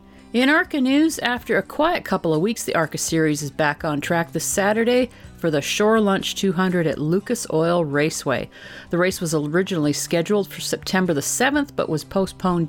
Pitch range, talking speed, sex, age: 155-205 Hz, 185 wpm, female, 50-69